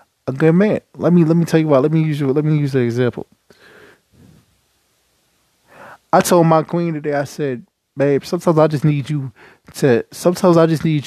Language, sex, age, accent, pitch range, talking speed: English, male, 20-39, American, 145-190 Hz, 195 wpm